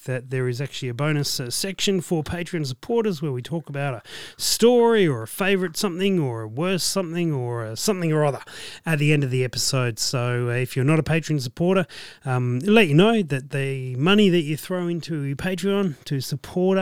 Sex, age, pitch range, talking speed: male, 30-49, 125-175 Hz, 205 wpm